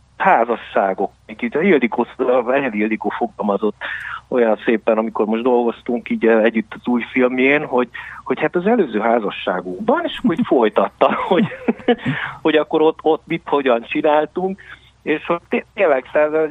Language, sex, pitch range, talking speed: Hungarian, male, 115-150 Hz, 140 wpm